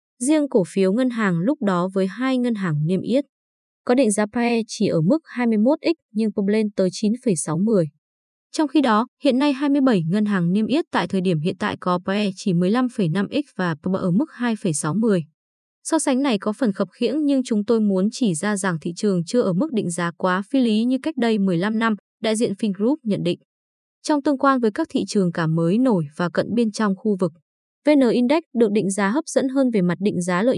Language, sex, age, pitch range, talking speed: Vietnamese, female, 20-39, 190-255 Hz, 220 wpm